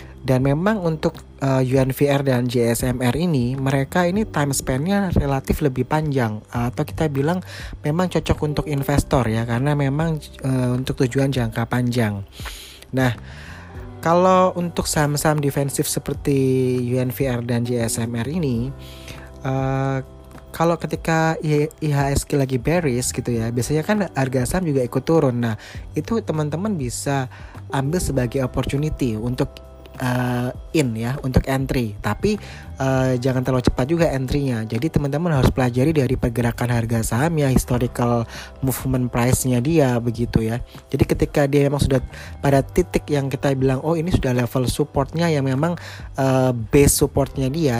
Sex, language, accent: male, Indonesian, native